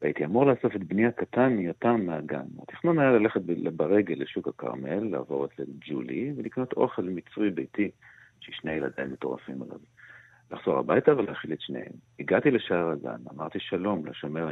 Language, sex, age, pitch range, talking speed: Hebrew, male, 50-69, 85-120 Hz, 170 wpm